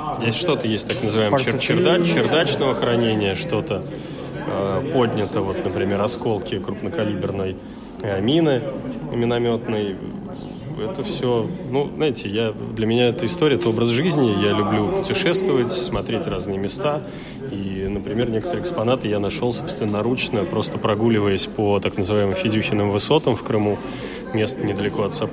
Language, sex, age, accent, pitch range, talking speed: Russian, male, 20-39, native, 100-120 Hz, 135 wpm